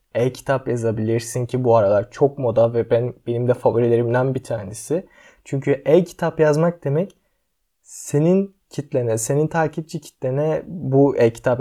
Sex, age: male, 20-39